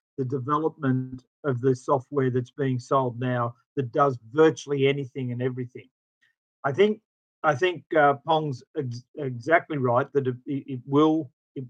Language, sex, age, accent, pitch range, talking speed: English, male, 50-69, Australian, 130-155 Hz, 150 wpm